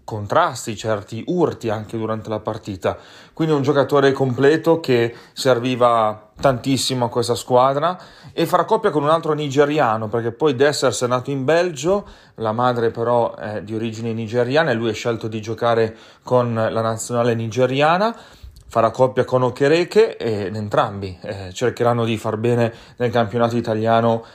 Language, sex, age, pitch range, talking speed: Italian, male, 30-49, 110-130 Hz, 150 wpm